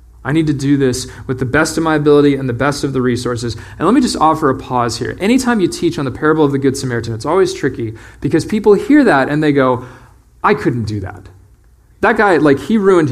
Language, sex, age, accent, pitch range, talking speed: English, male, 30-49, American, 115-170 Hz, 245 wpm